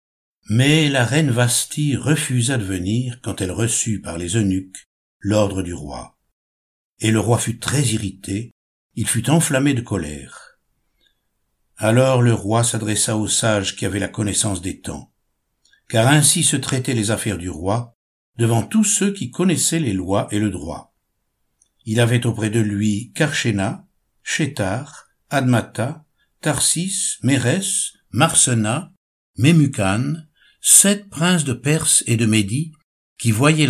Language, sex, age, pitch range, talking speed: French, male, 60-79, 100-140 Hz, 140 wpm